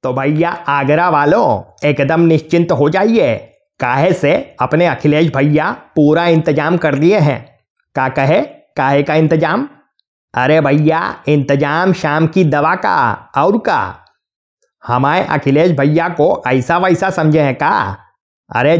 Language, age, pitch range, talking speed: Hindi, 30-49, 145-185 Hz, 135 wpm